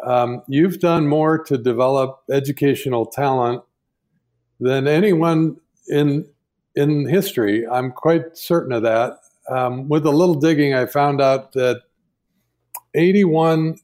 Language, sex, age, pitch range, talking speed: English, male, 50-69, 125-160 Hz, 120 wpm